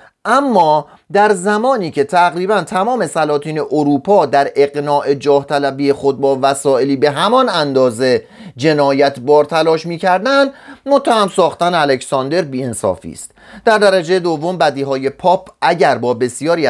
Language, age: Persian, 30-49